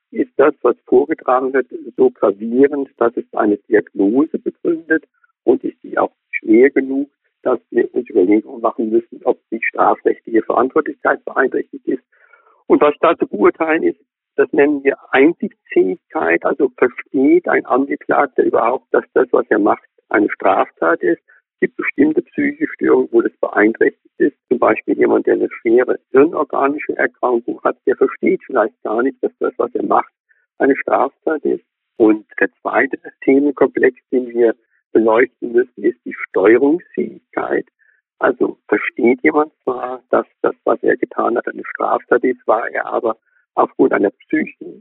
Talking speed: 150 wpm